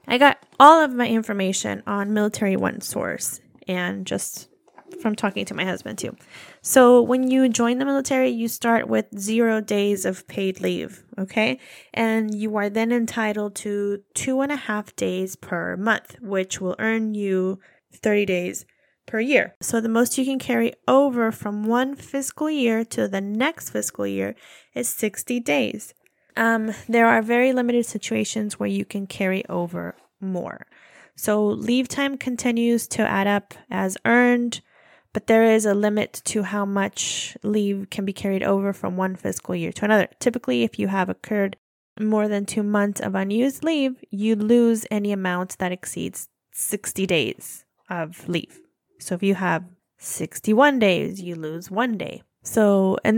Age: 20-39